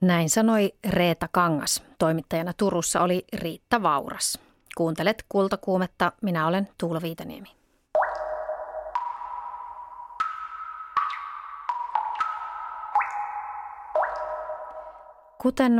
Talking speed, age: 55 wpm, 30-49